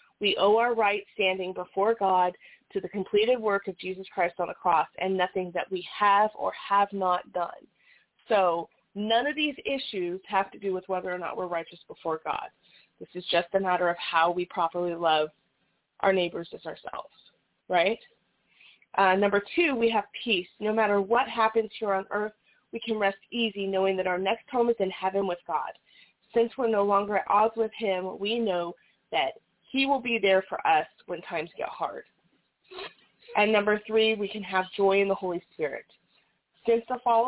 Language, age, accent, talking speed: English, 30-49, American, 190 wpm